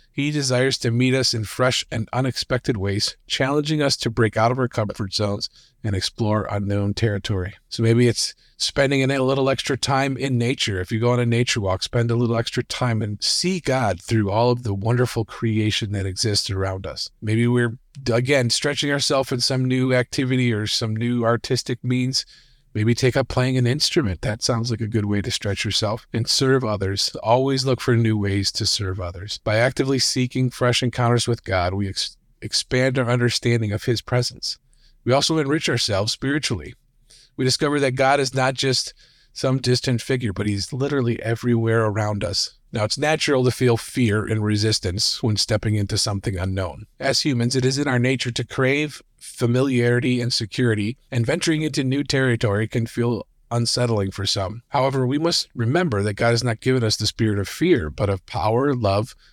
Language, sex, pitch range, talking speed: English, male, 110-130 Hz, 190 wpm